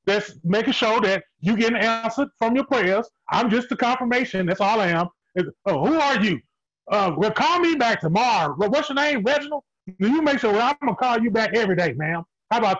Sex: male